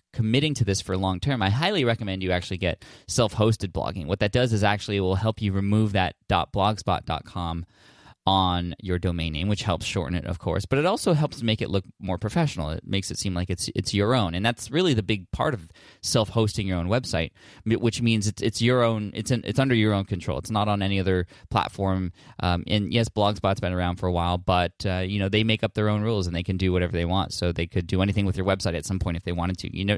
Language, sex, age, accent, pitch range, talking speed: English, male, 20-39, American, 90-110 Hz, 250 wpm